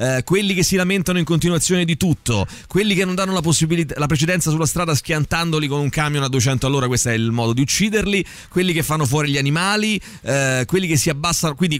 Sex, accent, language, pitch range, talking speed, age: male, native, Italian, 130-175 Hz, 220 wpm, 30-49